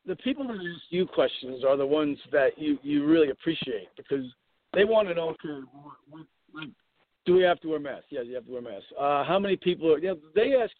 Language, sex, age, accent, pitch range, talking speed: English, male, 50-69, American, 150-245 Hz, 235 wpm